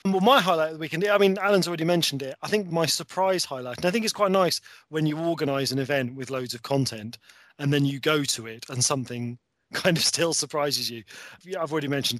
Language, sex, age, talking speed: English, male, 30-49, 235 wpm